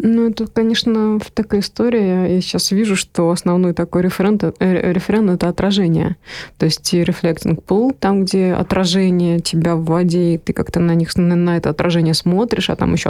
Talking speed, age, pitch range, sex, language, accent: 160 wpm, 20-39, 165-195 Hz, female, Russian, native